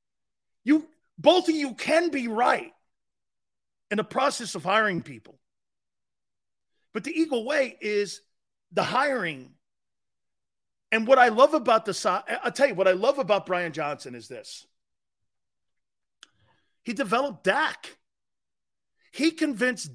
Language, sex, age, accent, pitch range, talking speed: English, male, 40-59, American, 160-255 Hz, 130 wpm